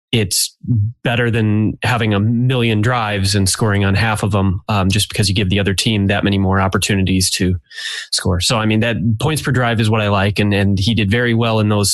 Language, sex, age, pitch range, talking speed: English, male, 20-39, 95-115 Hz, 230 wpm